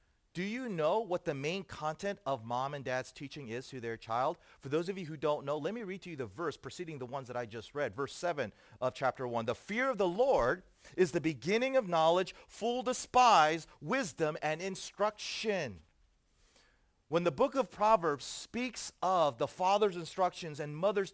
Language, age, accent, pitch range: English, 40-59, American, 150-220 Hz